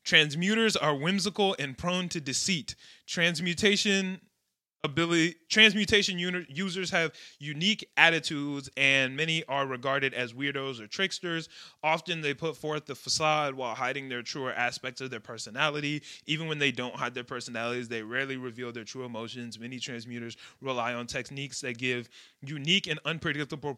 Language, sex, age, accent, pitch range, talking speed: English, male, 20-39, American, 130-175 Hz, 150 wpm